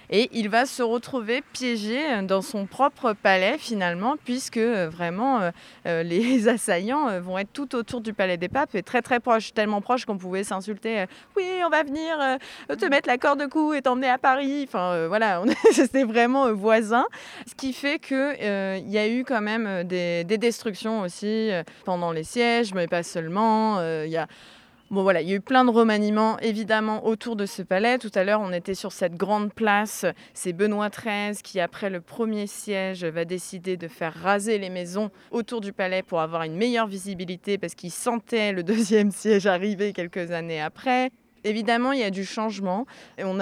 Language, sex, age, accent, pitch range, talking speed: French, female, 20-39, French, 180-235 Hz, 200 wpm